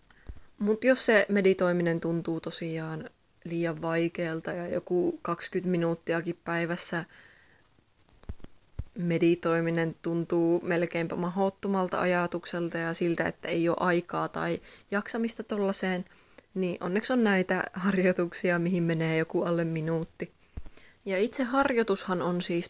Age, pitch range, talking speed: 20-39, 165-190 Hz, 110 wpm